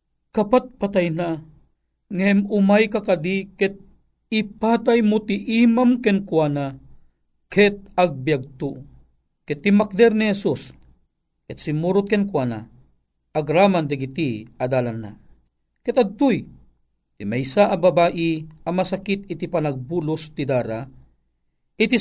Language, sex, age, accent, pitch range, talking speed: Filipino, male, 40-59, native, 125-185 Hz, 105 wpm